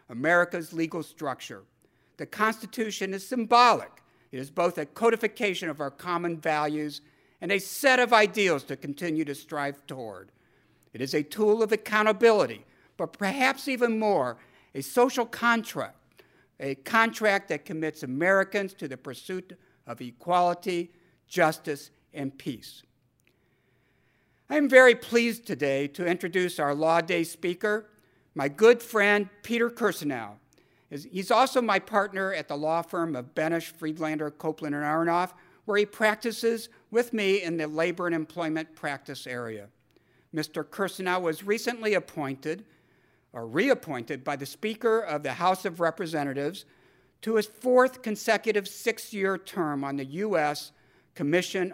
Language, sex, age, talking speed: English, male, 60-79, 140 wpm